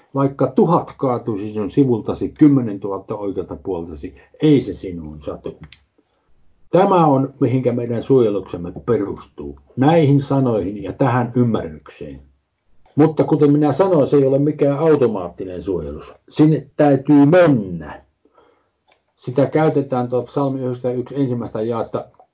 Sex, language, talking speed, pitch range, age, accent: male, Finnish, 115 wpm, 105-140 Hz, 50-69, native